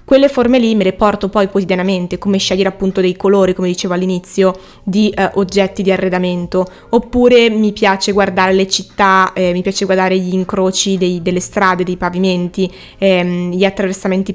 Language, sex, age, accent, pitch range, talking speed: Italian, female, 20-39, native, 185-220 Hz, 165 wpm